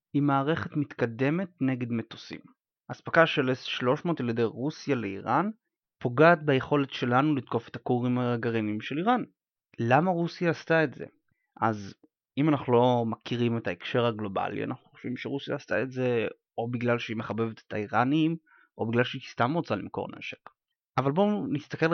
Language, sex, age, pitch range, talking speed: Hebrew, male, 30-49, 120-165 Hz, 155 wpm